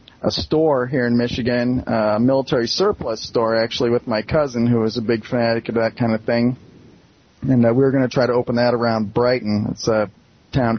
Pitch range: 115-130 Hz